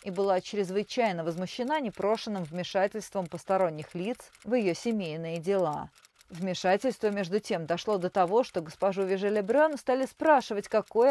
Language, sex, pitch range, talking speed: Russian, female, 175-230 Hz, 130 wpm